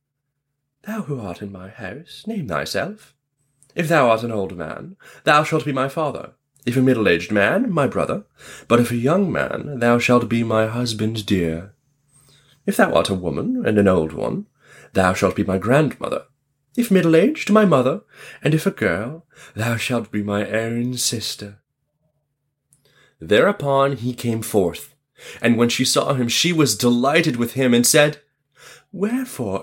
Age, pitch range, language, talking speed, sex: 30-49, 115-145 Hz, English, 165 wpm, male